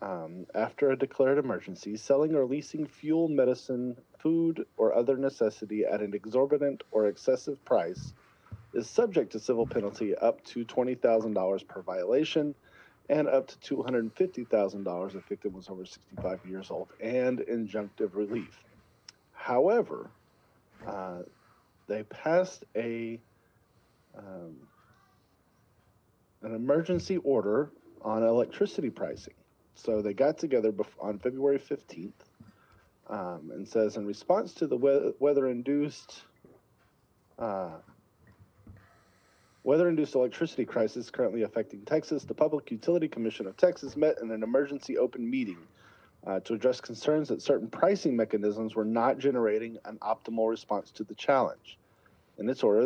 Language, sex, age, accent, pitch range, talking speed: English, male, 40-59, American, 105-140 Hz, 130 wpm